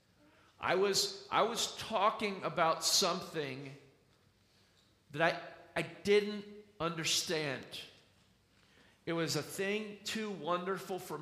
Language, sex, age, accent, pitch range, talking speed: English, male, 40-59, American, 115-155 Hz, 100 wpm